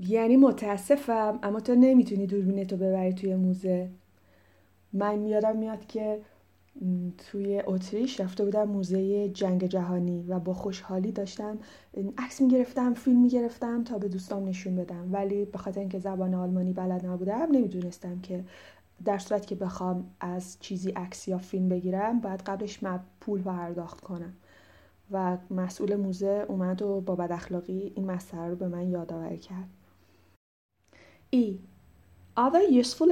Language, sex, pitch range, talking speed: Persian, female, 180-245 Hz, 140 wpm